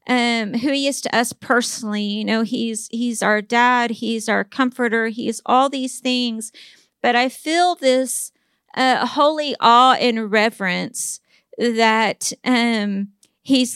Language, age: English, 40-59